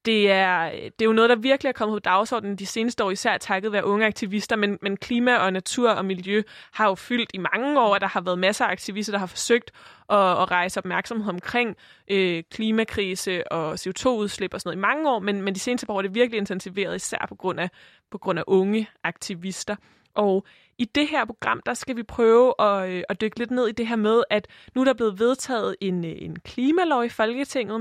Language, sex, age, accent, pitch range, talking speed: Danish, female, 20-39, native, 195-235 Hz, 230 wpm